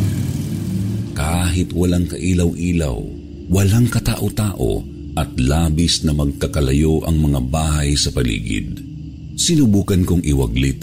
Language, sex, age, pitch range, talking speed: Filipino, male, 50-69, 75-95 Hz, 95 wpm